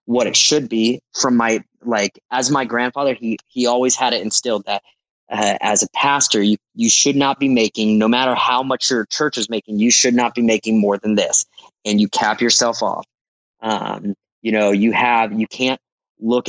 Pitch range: 105-125 Hz